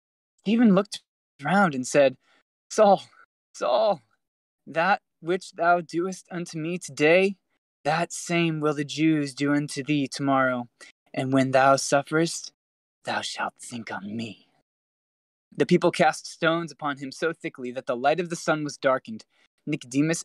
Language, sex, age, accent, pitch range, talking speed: English, male, 20-39, American, 140-195 Hz, 150 wpm